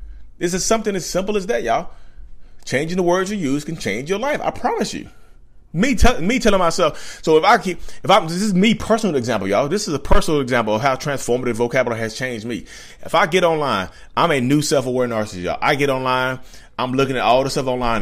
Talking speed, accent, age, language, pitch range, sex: 230 wpm, American, 30-49, English, 110-165 Hz, male